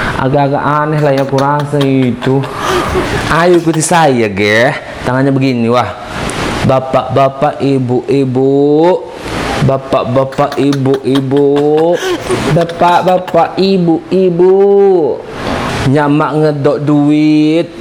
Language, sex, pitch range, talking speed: Indonesian, male, 145-195 Hz, 75 wpm